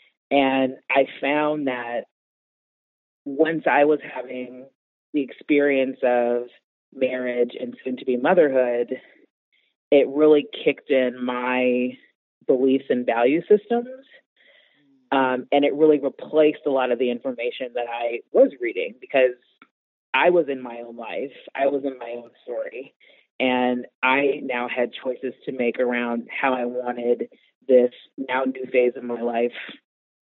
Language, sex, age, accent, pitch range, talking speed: English, female, 30-49, American, 125-150 Hz, 140 wpm